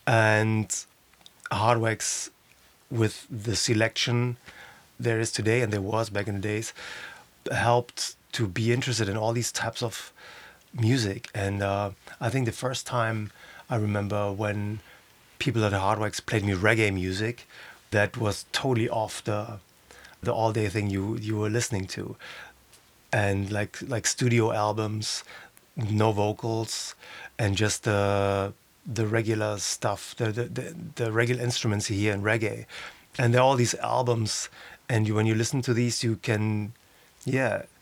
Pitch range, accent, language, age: 105-120 Hz, German, English, 30-49